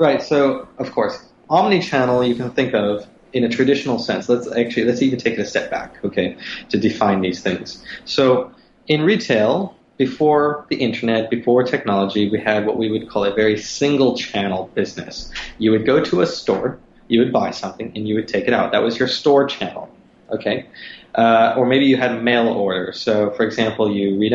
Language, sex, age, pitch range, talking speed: English, male, 20-39, 105-125 Hz, 195 wpm